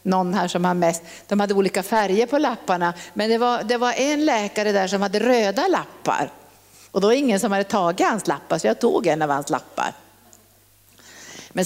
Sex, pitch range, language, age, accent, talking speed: female, 185-245 Hz, Swedish, 50-69, native, 195 wpm